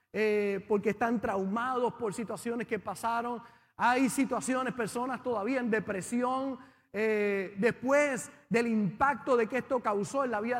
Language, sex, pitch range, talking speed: Spanish, male, 220-270 Hz, 140 wpm